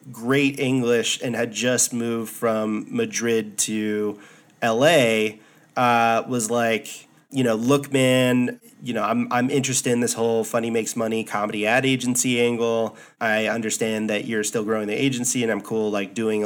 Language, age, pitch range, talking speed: English, 30-49, 110-125 Hz, 165 wpm